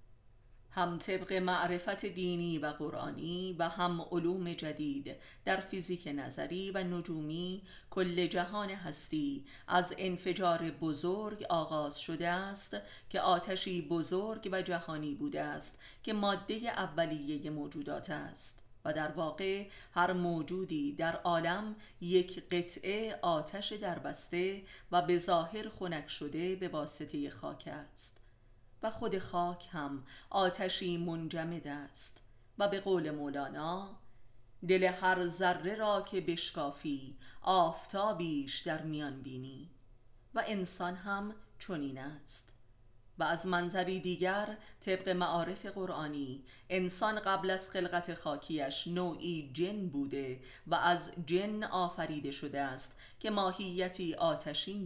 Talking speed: 115 wpm